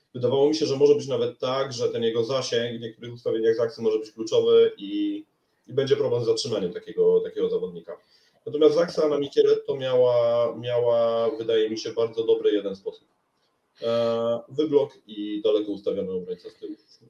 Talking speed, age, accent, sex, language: 170 wpm, 30-49, native, male, Polish